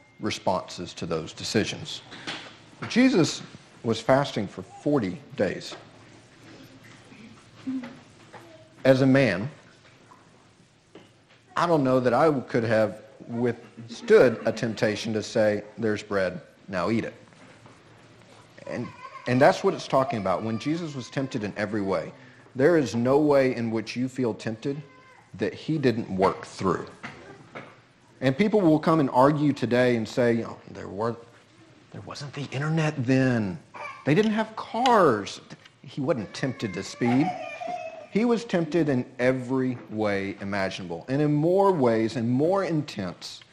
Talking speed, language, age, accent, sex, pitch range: 135 wpm, English, 40-59, American, male, 110-150 Hz